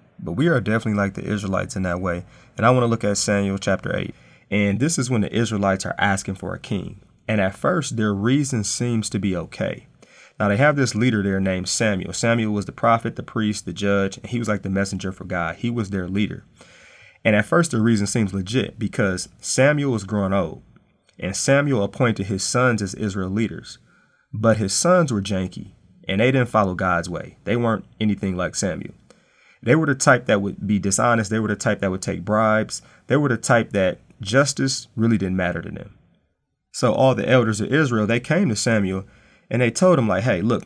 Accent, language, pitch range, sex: American, English, 100-125 Hz, male